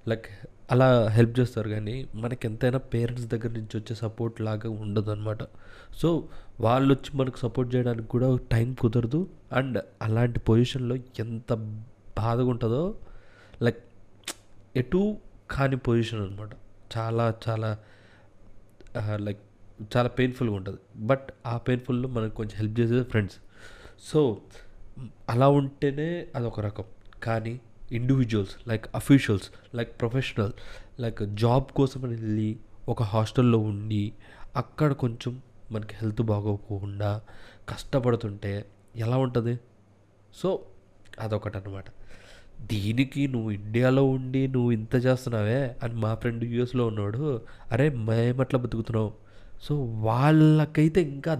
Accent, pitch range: native, 105-125 Hz